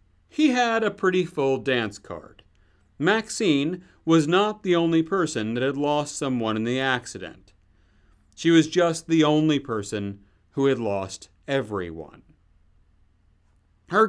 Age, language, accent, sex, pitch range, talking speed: 40-59, English, American, male, 105-180 Hz, 130 wpm